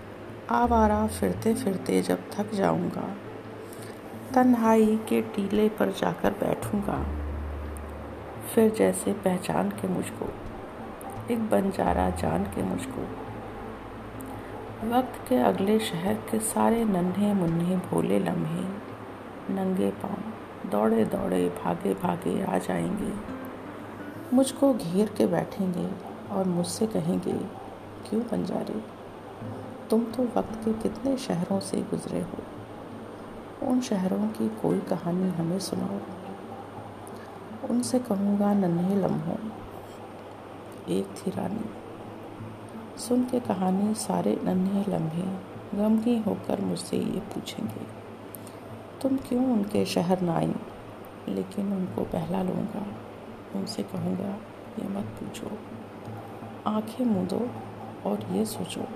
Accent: native